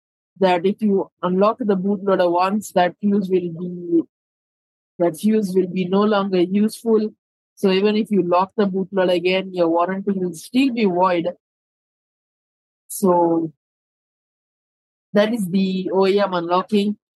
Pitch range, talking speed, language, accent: 180-210 Hz, 135 wpm, English, Indian